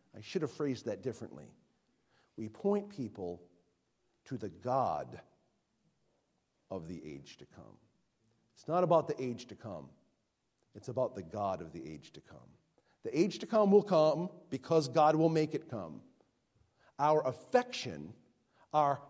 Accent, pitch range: American, 125-165 Hz